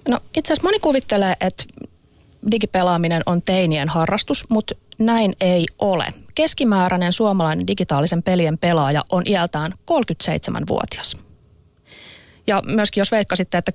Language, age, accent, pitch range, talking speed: Finnish, 30-49, native, 165-215 Hz, 120 wpm